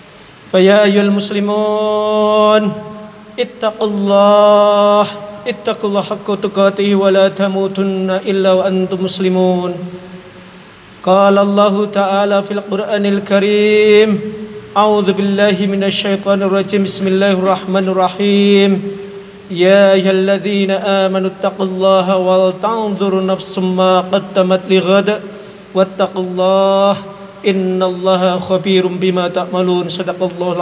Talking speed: 55 wpm